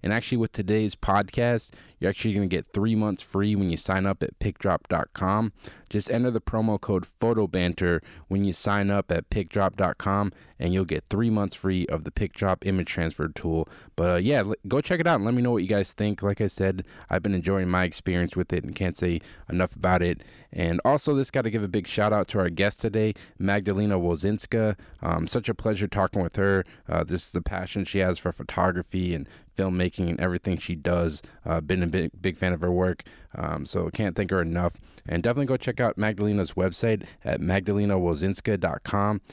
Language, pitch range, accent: English, 90-110 Hz, American